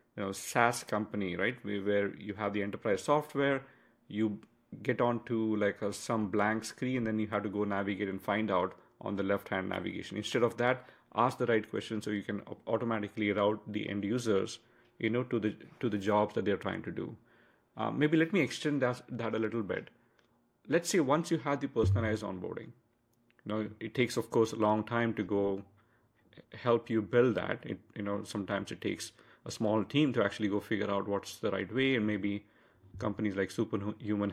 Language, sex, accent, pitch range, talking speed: English, male, Indian, 105-120 Hz, 205 wpm